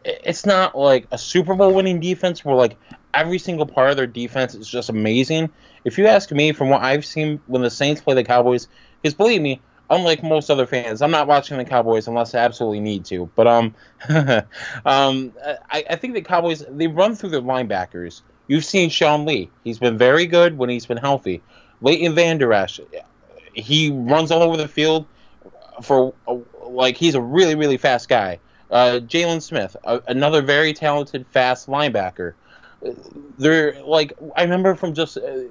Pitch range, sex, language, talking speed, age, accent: 125-160 Hz, male, English, 185 wpm, 20-39, American